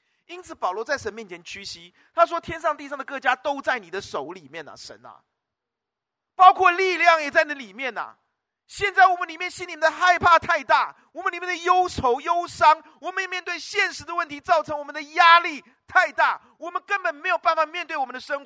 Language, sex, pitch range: Chinese, male, 260-350 Hz